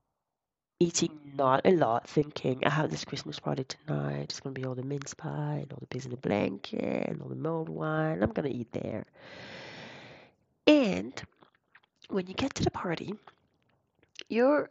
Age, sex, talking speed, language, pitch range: 30-49, female, 185 wpm, English, 175-265 Hz